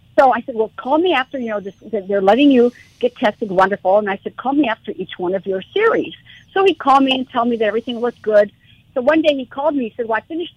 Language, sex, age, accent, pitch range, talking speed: English, female, 50-69, American, 200-265 Hz, 275 wpm